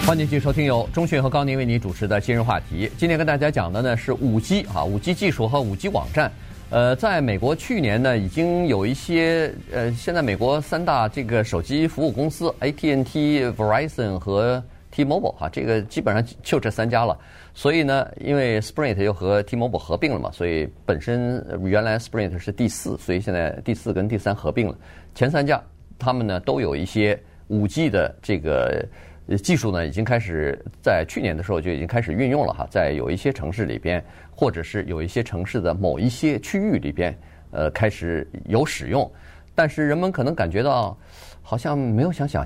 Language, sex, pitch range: Chinese, male, 90-135 Hz